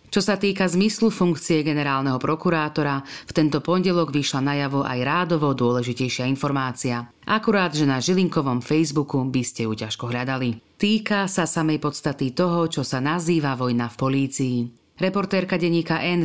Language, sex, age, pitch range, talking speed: Slovak, female, 40-59, 130-175 Hz, 150 wpm